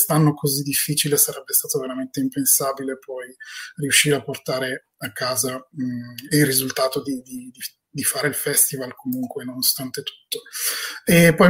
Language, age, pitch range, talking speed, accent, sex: Italian, 20-39, 135-165 Hz, 140 wpm, native, male